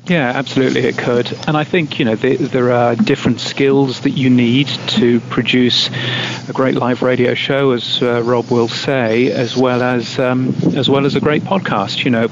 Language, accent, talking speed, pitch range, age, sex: English, British, 200 wpm, 120-135 Hz, 40-59, male